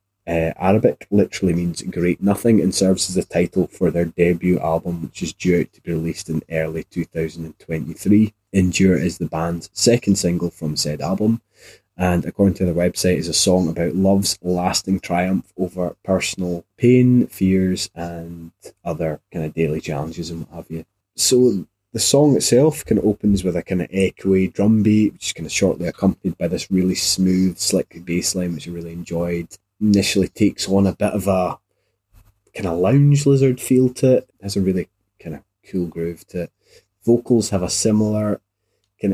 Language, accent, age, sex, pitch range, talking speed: English, British, 20-39, male, 85-100 Hz, 190 wpm